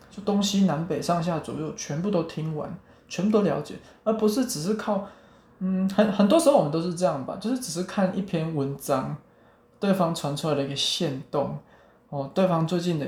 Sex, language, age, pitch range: male, Chinese, 20-39, 145-195 Hz